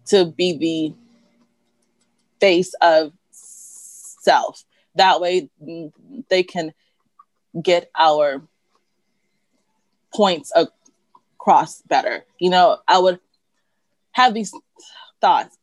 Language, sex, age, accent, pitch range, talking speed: English, female, 20-39, American, 180-270 Hz, 85 wpm